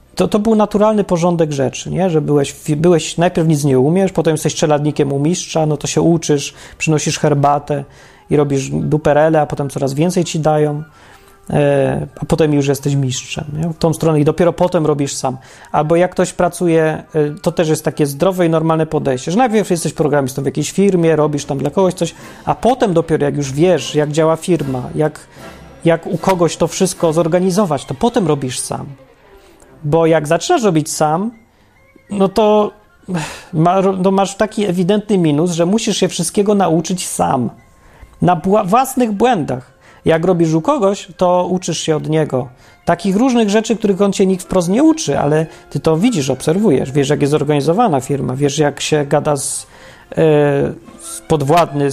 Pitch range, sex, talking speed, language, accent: 145-185 Hz, male, 170 wpm, Polish, native